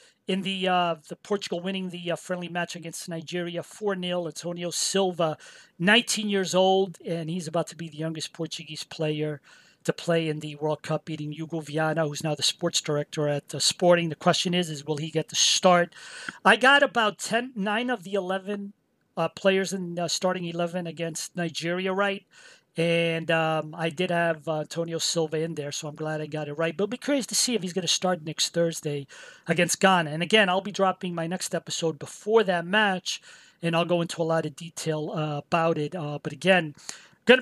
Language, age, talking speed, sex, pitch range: English, 40-59, 205 wpm, male, 160-200 Hz